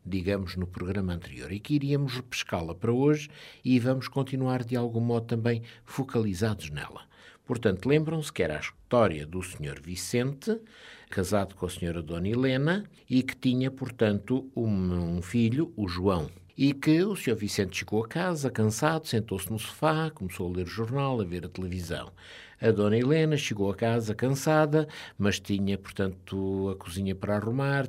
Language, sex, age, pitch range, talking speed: Portuguese, male, 60-79, 95-130 Hz, 170 wpm